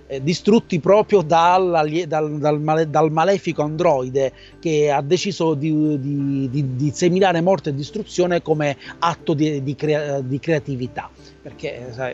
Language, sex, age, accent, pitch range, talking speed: Italian, male, 30-49, native, 130-165 Hz, 110 wpm